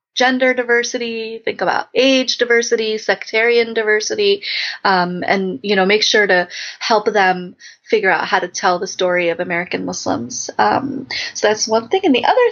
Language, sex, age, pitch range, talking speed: English, female, 20-39, 195-260 Hz, 170 wpm